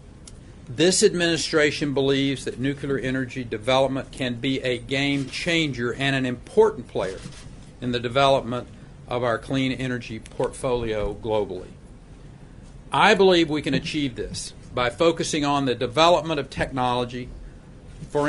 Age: 50-69